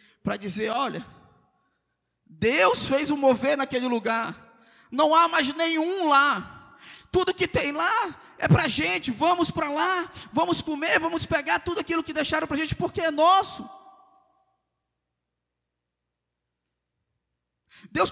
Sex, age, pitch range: male, 20-39, 290-340 Hz